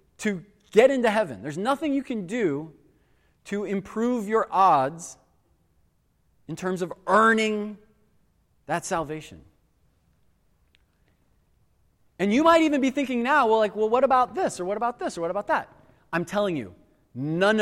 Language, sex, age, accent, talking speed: English, male, 30-49, American, 150 wpm